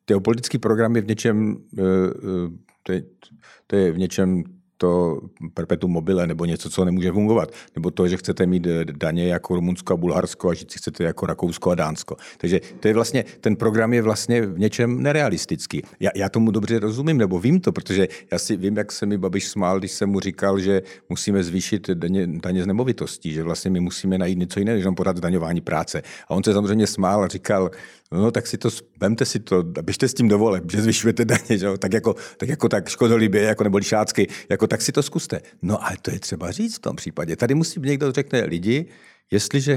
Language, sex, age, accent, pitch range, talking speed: Czech, male, 50-69, native, 90-115 Hz, 210 wpm